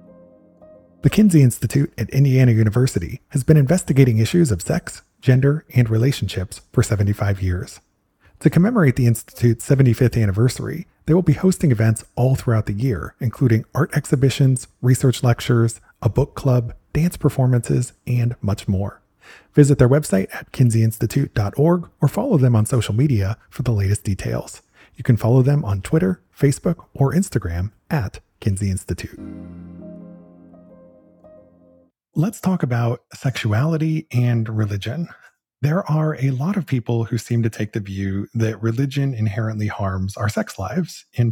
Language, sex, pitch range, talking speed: English, male, 105-140 Hz, 145 wpm